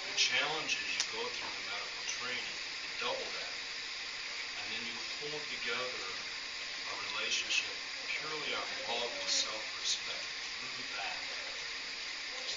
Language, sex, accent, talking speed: English, male, American, 135 wpm